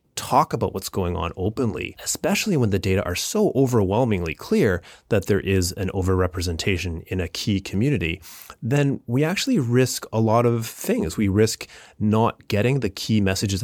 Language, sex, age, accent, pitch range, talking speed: English, male, 30-49, American, 95-120 Hz, 165 wpm